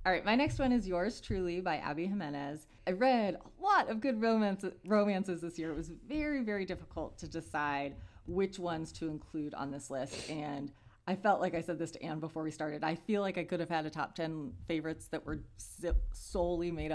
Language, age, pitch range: English, 30-49, 150-200 Hz